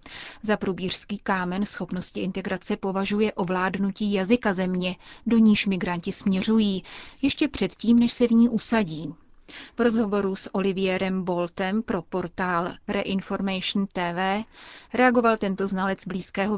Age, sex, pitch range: 30-49, female, 185-220 Hz